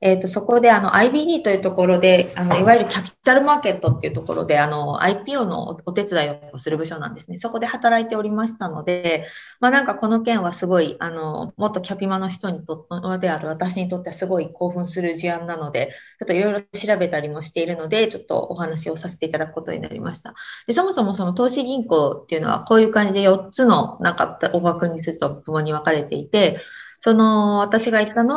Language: Japanese